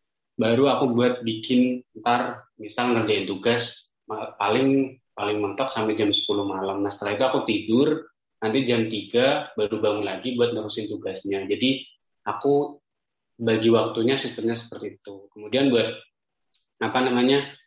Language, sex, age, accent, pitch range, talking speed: Indonesian, male, 20-39, native, 110-125 Hz, 135 wpm